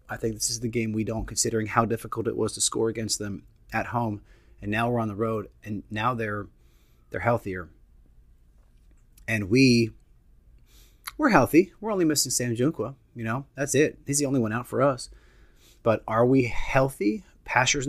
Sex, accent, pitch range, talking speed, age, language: male, American, 100-120 Hz, 185 wpm, 30-49, English